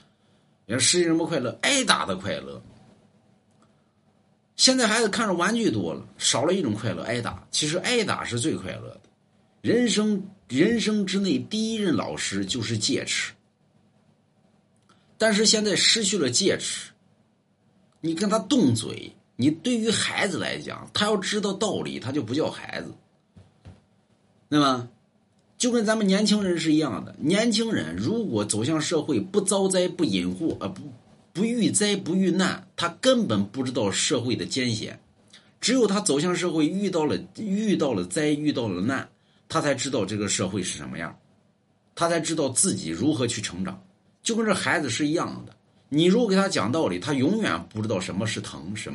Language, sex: Chinese, male